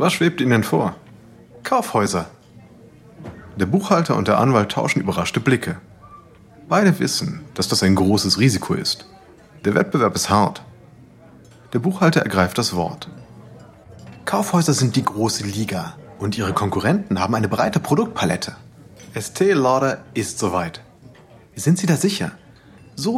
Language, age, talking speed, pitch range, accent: German, 30-49, 130 wpm, 100-150 Hz, German